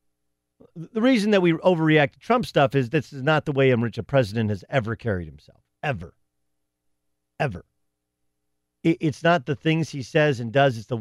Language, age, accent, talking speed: English, 40-59, American, 185 wpm